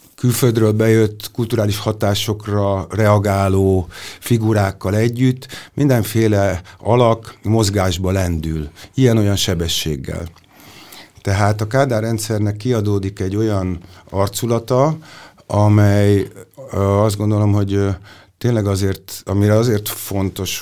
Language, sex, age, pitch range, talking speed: Hungarian, male, 50-69, 95-110 Hz, 85 wpm